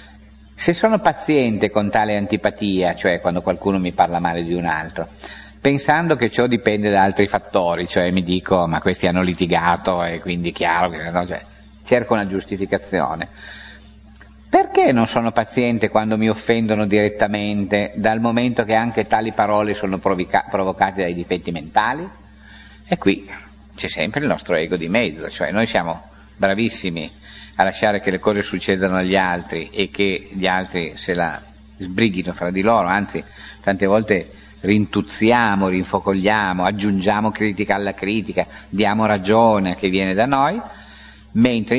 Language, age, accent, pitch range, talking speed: Italian, 50-69, native, 90-110 Hz, 150 wpm